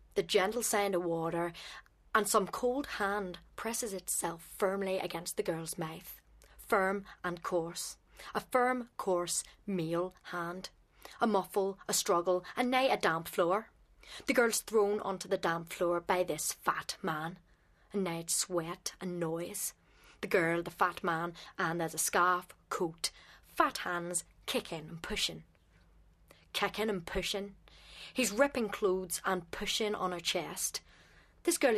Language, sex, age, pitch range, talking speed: English, female, 30-49, 175-210 Hz, 145 wpm